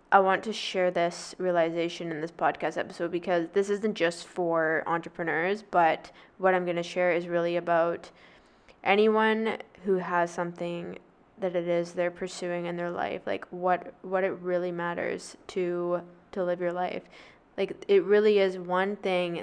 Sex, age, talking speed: female, 10-29, 165 wpm